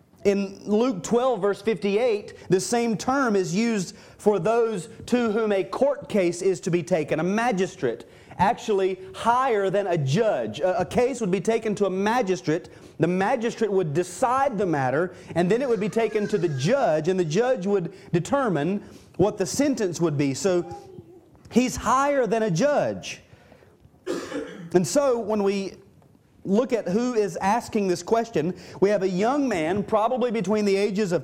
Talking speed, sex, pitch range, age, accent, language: 170 wpm, male, 180-230 Hz, 30-49, American, English